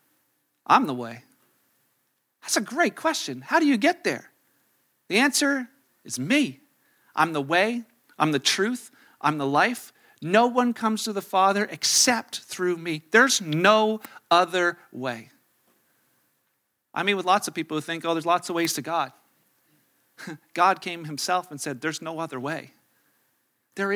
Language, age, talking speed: English, 40-59, 160 wpm